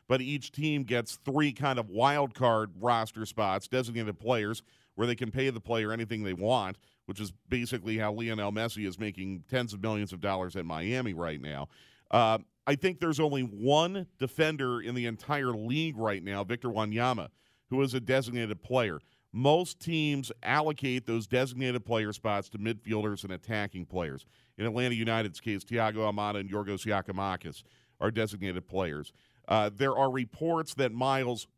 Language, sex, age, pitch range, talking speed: English, male, 40-59, 105-130 Hz, 170 wpm